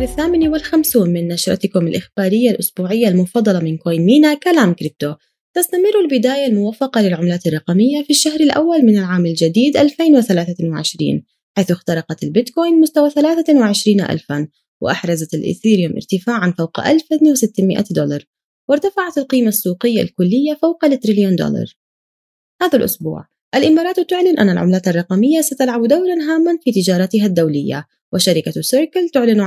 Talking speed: 120 wpm